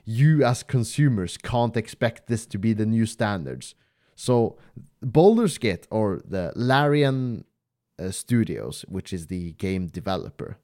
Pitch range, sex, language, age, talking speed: 105-140 Hz, male, English, 30-49, 135 wpm